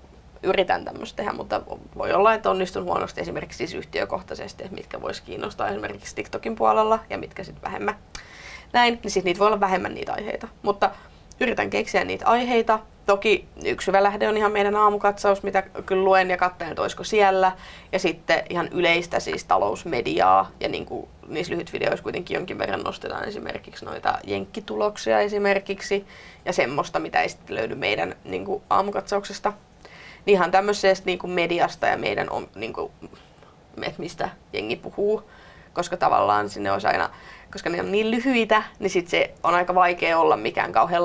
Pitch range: 180-215 Hz